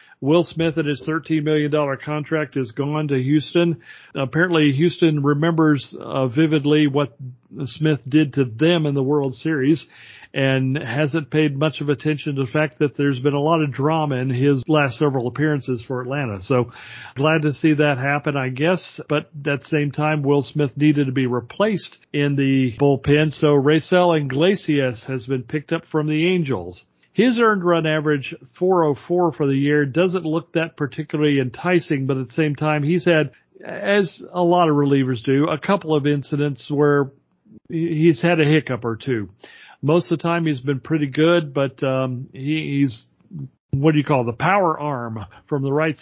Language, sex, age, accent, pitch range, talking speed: English, male, 40-59, American, 135-160 Hz, 180 wpm